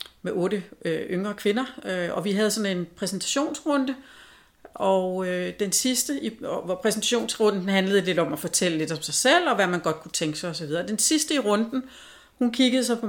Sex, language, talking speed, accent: female, Danish, 195 wpm, native